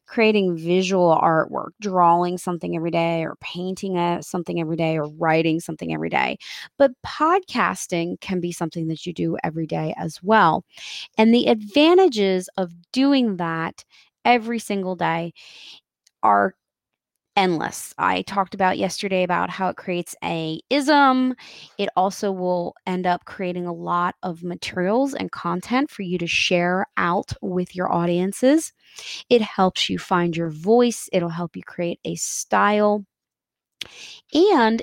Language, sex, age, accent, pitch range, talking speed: English, female, 20-39, American, 175-235 Hz, 145 wpm